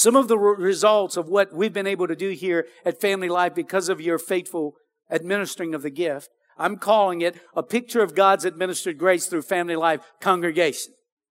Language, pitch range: English, 195-275 Hz